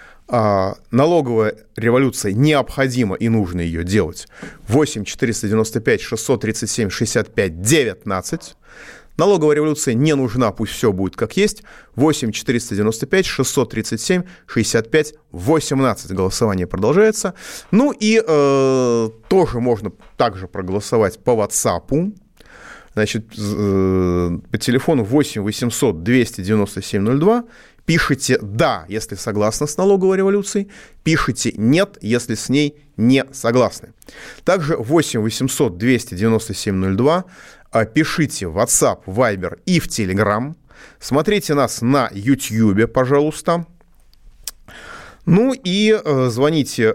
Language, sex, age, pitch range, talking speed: Russian, male, 30-49, 110-150 Hz, 85 wpm